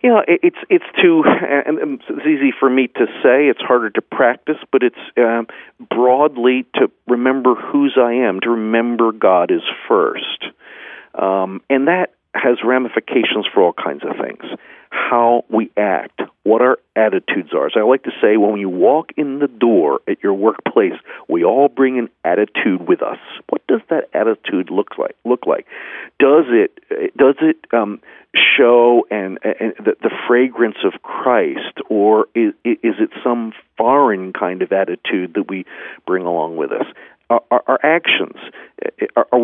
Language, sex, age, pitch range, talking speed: English, male, 50-69, 115-155 Hz, 165 wpm